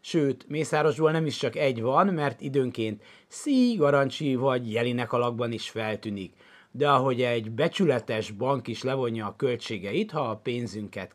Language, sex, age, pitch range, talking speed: Hungarian, male, 30-49, 115-155 Hz, 145 wpm